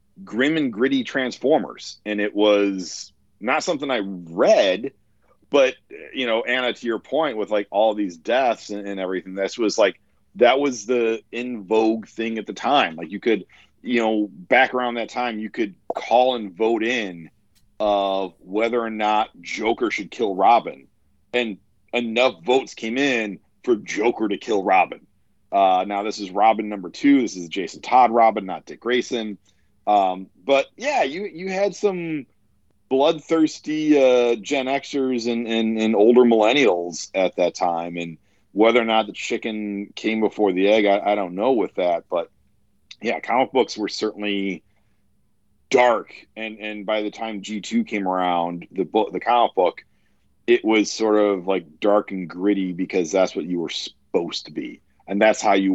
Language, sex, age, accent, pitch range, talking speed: English, male, 40-59, American, 100-120 Hz, 175 wpm